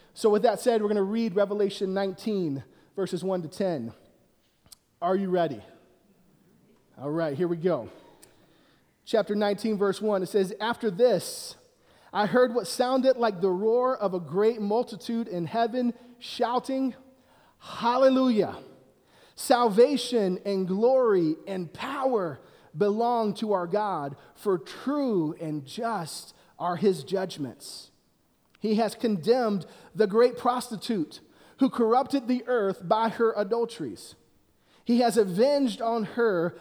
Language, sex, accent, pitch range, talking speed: English, male, American, 195-245 Hz, 130 wpm